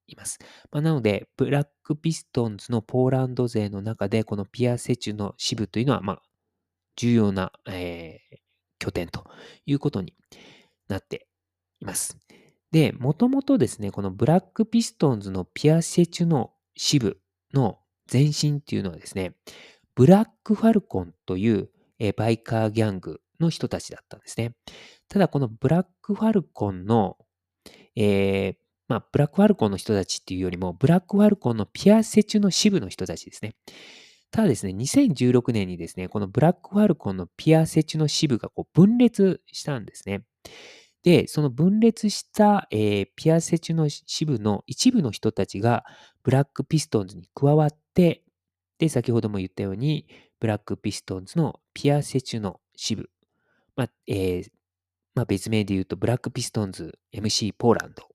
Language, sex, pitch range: Japanese, male, 100-160 Hz